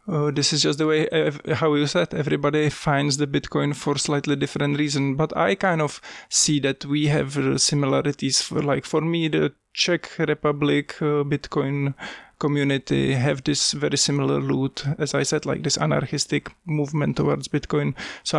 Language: English